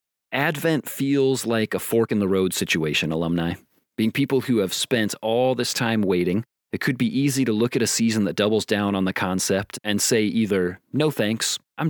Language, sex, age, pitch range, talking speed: English, male, 30-49, 95-115 Hz, 200 wpm